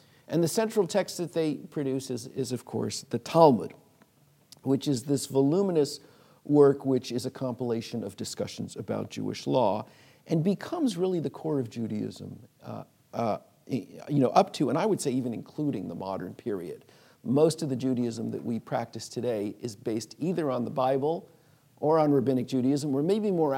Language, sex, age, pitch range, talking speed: English, male, 50-69, 125-165 Hz, 180 wpm